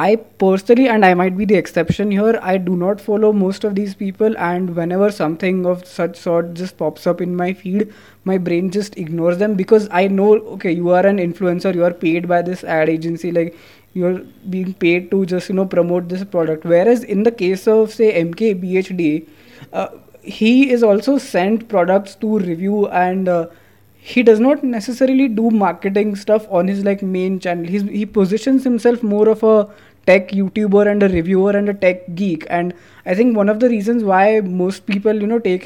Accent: Indian